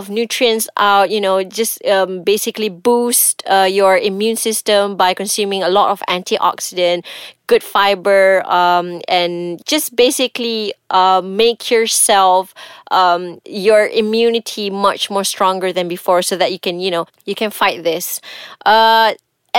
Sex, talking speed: female, 145 wpm